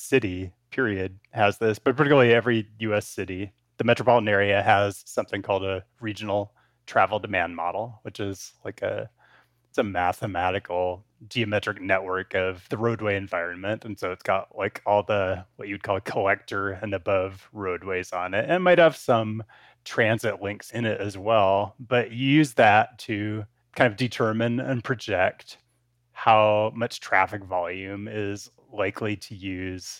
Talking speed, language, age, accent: 155 wpm, English, 30-49, American